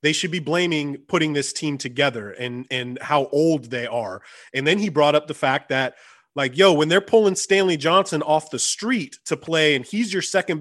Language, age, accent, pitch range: English, 30-49, American, 135-175 Hz